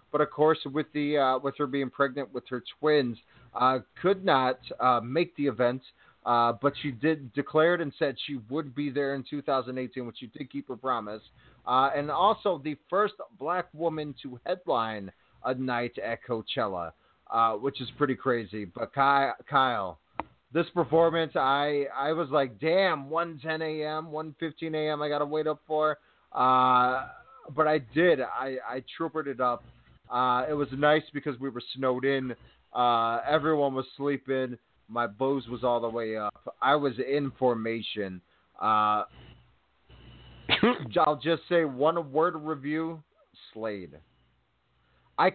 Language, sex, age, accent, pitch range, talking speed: English, male, 30-49, American, 120-155 Hz, 155 wpm